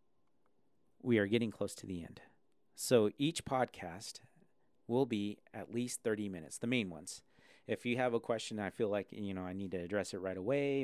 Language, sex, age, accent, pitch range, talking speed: English, male, 40-59, American, 95-120 Hz, 200 wpm